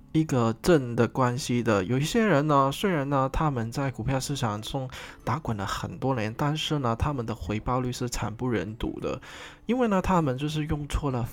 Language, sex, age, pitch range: Chinese, male, 20-39, 110-145 Hz